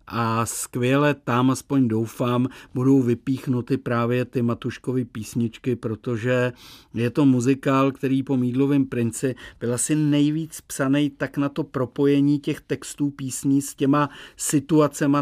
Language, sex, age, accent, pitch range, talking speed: Czech, male, 50-69, native, 110-130 Hz, 130 wpm